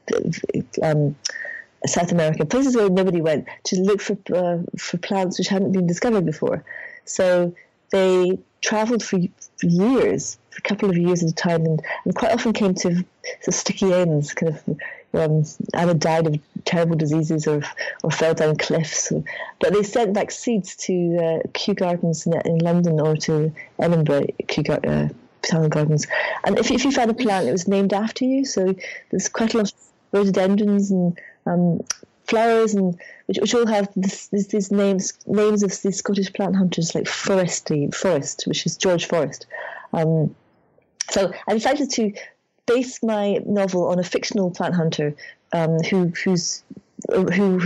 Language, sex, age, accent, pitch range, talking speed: English, female, 40-59, British, 170-210 Hz, 165 wpm